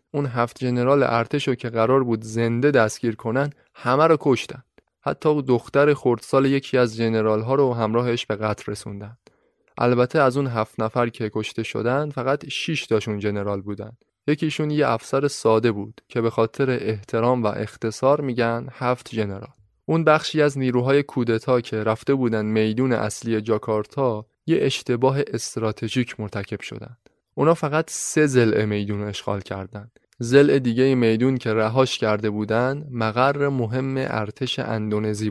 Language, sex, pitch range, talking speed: Persian, male, 110-130 Hz, 145 wpm